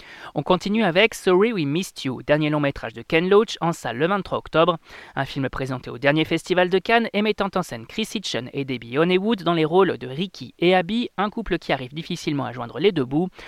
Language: French